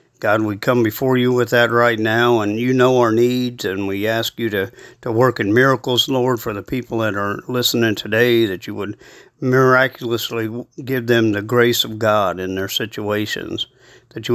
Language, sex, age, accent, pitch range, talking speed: English, male, 50-69, American, 110-125 Hz, 190 wpm